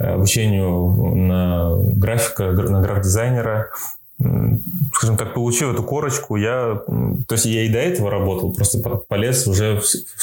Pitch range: 95-115 Hz